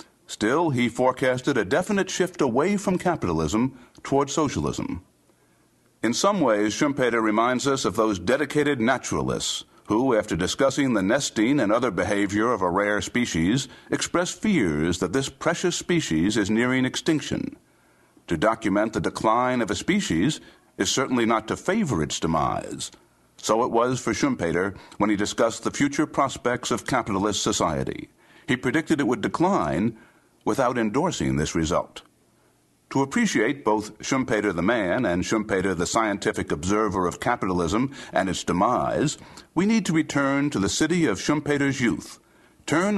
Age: 60-79